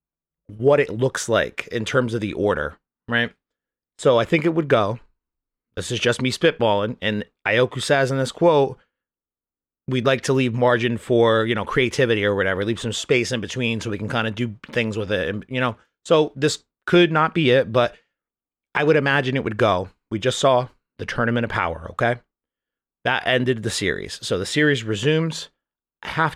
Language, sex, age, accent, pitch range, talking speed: English, male, 30-49, American, 110-140 Hz, 200 wpm